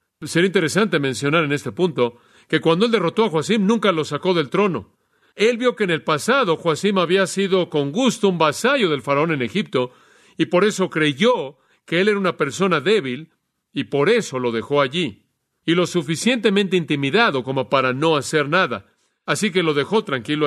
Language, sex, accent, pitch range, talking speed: Spanish, male, Mexican, 145-195 Hz, 190 wpm